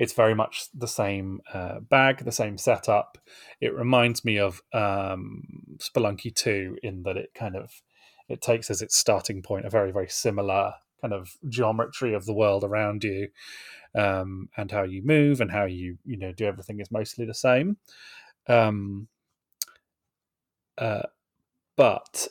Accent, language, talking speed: British, English, 155 wpm